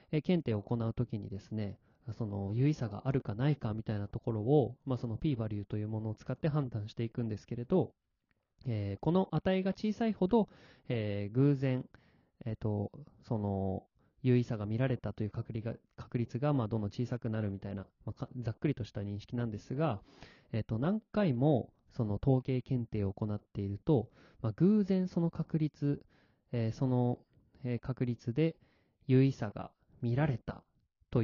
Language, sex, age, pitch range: Japanese, male, 20-39, 110-145 Hz